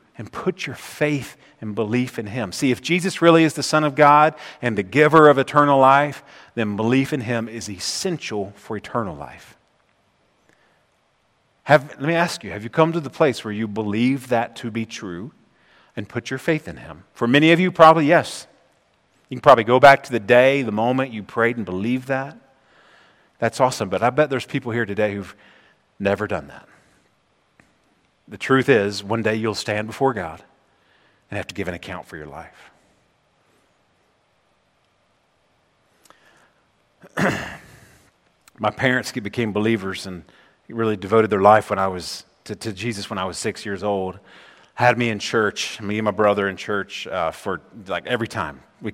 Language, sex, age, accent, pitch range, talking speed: English, male, 40-59, American, 105-135 Hz, 175 wpm